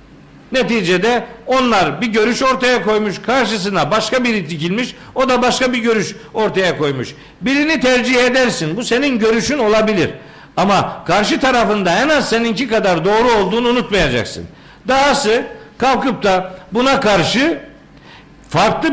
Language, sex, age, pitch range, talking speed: Turkish, male, 60-79, 210-255 Hz, 125 wpm